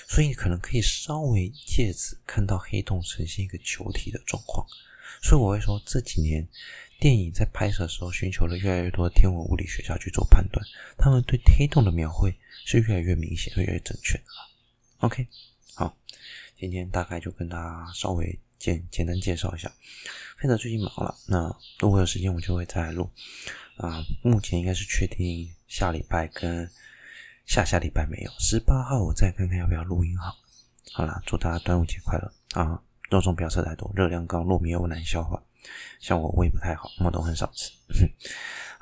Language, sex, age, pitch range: Chinese, male, 20-39, 85-100 Hz